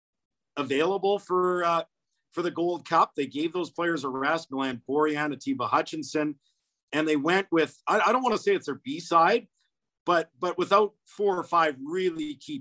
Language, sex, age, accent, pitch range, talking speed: English, male, 50-69, American, 130-165 Hz, 180 wpm